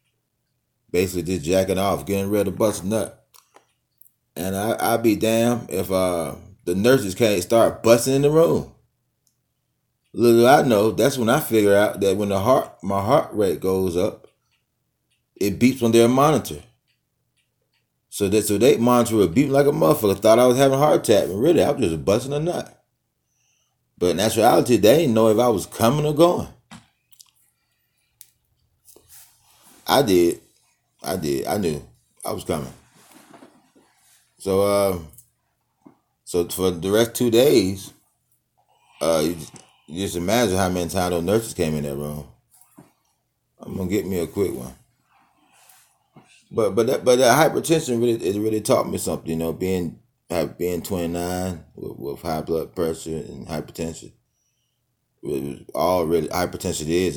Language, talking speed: English, 155 wpm